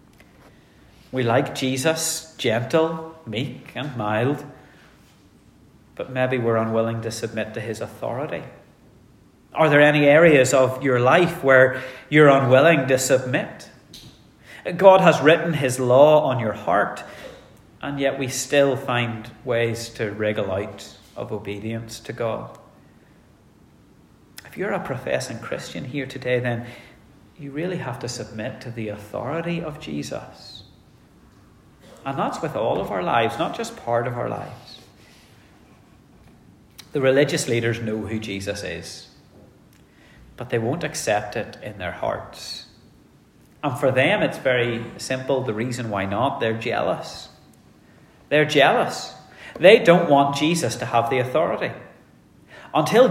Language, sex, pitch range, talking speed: English, male, 115-145 Hz, 135 wpm